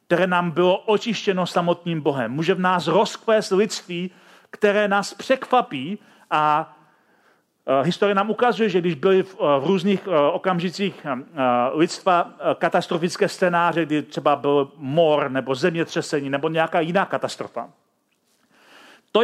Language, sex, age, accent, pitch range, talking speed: Czech, male, 40-59, native, 165-215 Hz, 135 wpm